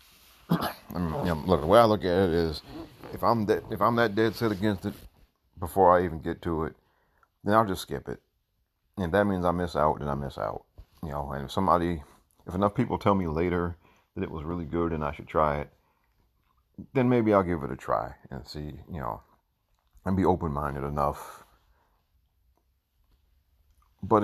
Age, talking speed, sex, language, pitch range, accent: 40-59, 200 wpm, male, English, 75-95 Hz, American